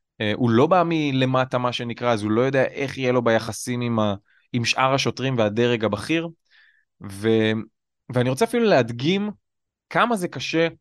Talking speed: 160 wpm